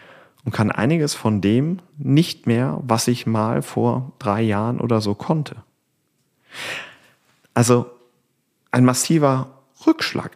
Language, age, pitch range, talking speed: German, 40-59, 105-130 Hz, 115 wpm